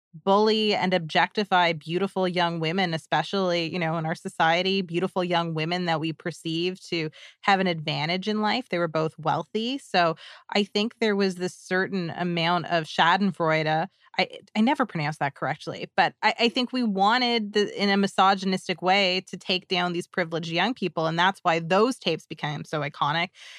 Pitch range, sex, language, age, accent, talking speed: 165-210 Hz, female, English, 20-39, American, 180 wpm